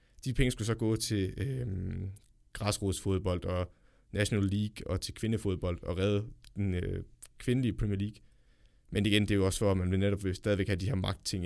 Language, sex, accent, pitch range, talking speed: Danish, male, native, 100-120 Hz, 195 wpm